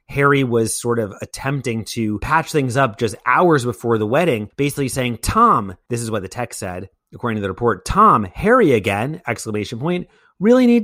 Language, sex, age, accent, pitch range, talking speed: English, male, 30-49, American, 100-140 Hz, 190 wpm